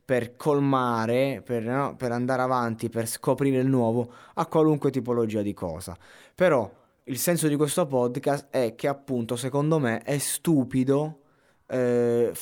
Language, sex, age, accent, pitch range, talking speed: Italian, male, 20-39, native, 110-140 Hz, 145 wpm